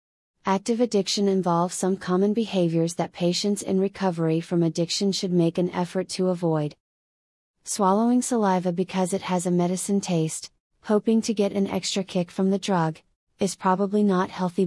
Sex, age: female, 30-49